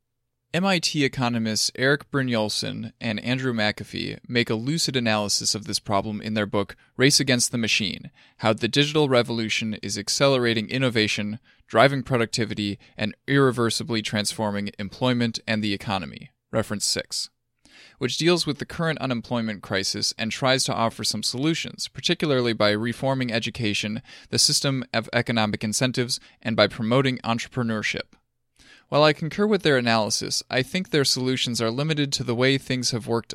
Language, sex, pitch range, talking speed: English, male, 110-135 Hz, 150 wpm